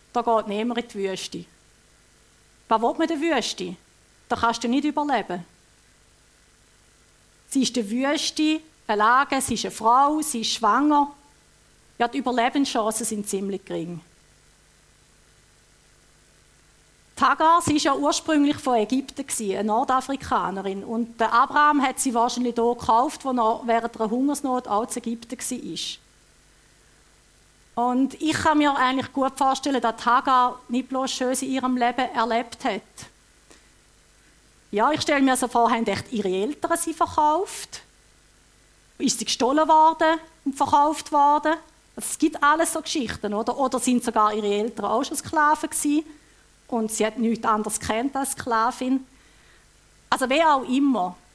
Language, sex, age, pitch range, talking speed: German, female, 50-69, 225-285 Hz, 135 wpm